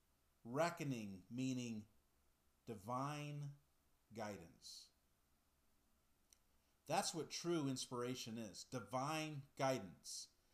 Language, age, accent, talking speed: English, 40-59, American, 65 wpm